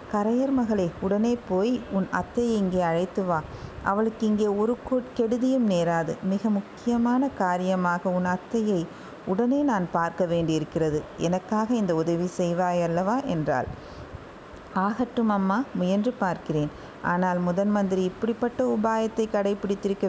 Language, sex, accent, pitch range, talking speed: Tamil, female, native, 175-210 Hz, 115 wpm